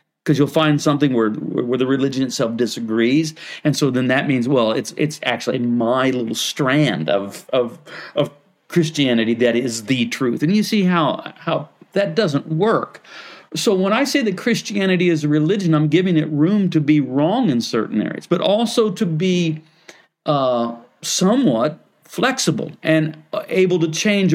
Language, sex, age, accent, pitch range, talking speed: English, male, 40-59, American, 145-195 Hz, 170 wpm